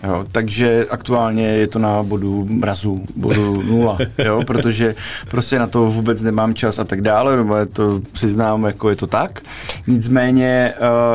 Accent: native